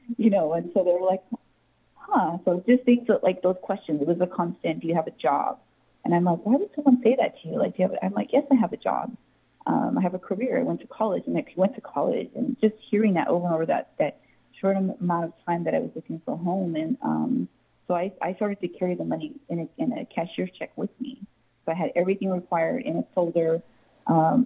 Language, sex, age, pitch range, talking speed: English, female, 30-49, 165-230 Hz, 260 wpm